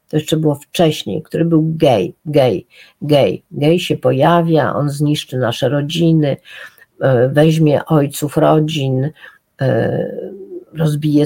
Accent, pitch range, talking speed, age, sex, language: native, 150-175 Hz, 105 wpm, 50-69, female, Polish